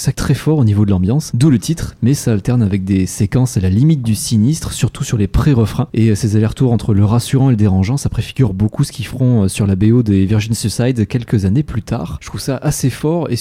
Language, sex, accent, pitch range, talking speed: French, male, French, 100-130 Hz, 255 wpm